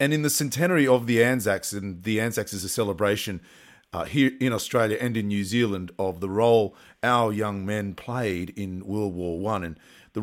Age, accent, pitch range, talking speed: 40-59, Australian, 100-125 Hz, 200 wpm